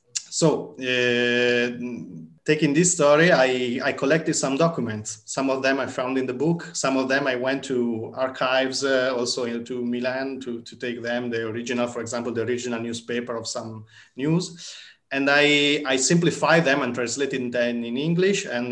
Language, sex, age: English, male, 30-49